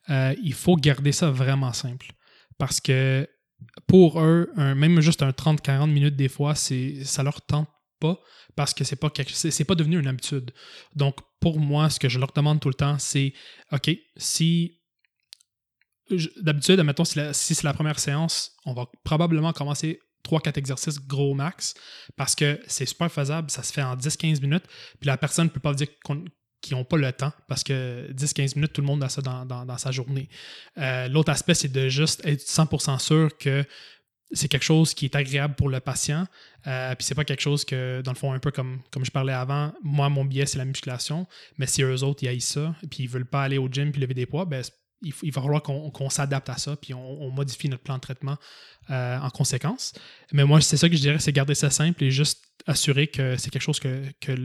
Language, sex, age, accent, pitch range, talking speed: French, male, 20-39, Canadian, 135-155 Hz, 230 wpm